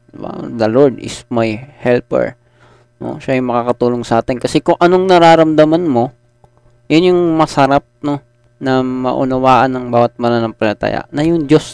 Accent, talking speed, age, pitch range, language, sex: native, 145 wpm, 20-39, 115-135 Hz, Filipino, male